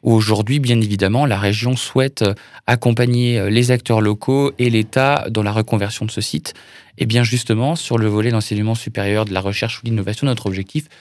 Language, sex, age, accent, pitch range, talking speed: French, male, 20-39, French, 110-130 Hz, 185 wpm